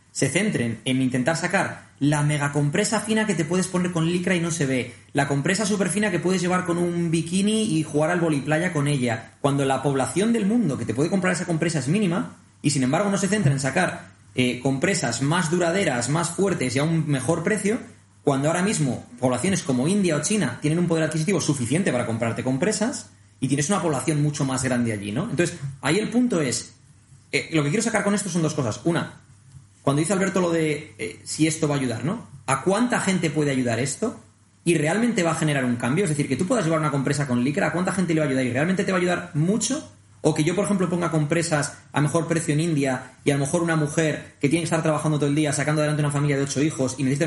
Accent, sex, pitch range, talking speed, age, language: Spanish, male, 130-170 Hz, 240 wpm, 30-49, Spanish